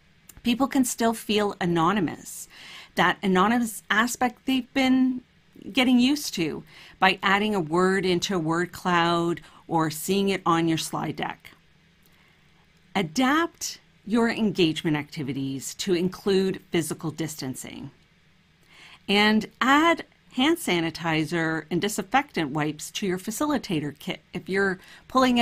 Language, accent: English, American